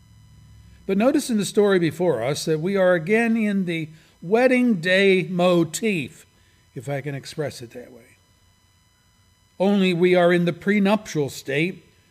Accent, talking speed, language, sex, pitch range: American, 150 wpm, English, male, 100-140 Hz